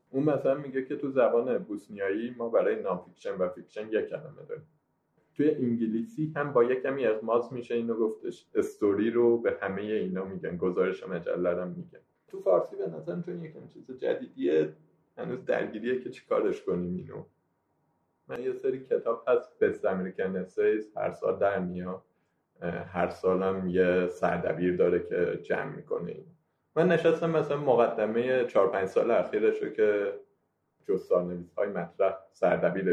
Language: Persian